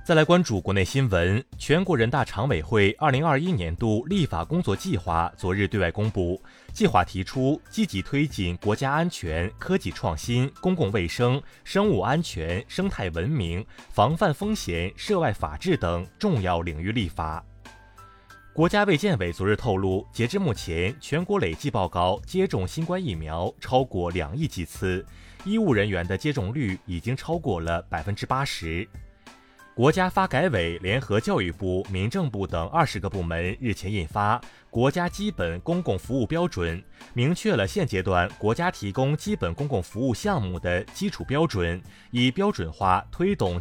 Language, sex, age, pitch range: Chinese, male, 30-49, 90-150 Hz